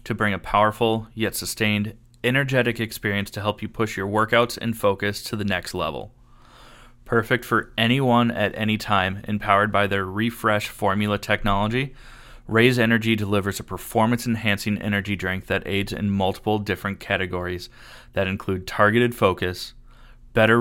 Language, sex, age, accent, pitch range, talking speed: English, male, 20-39, American, 100-120 Hz, 145 wpm